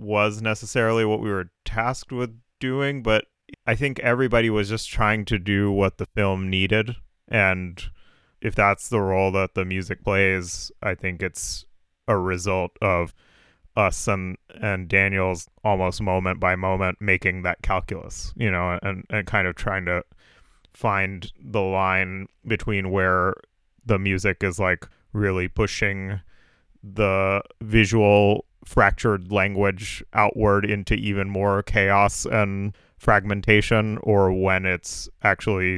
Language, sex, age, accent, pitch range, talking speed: English, male, 20-39, American, 95-105 Hz, 135 wpm